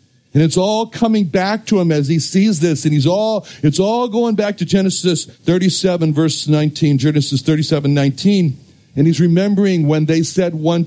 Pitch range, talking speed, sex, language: 130-185 Hz, 175 wpm, male, English